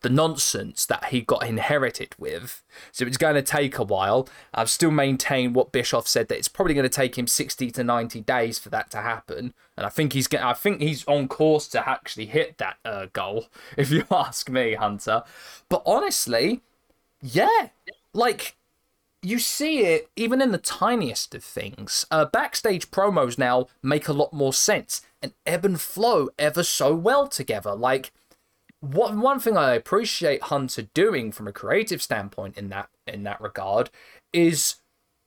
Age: 20-39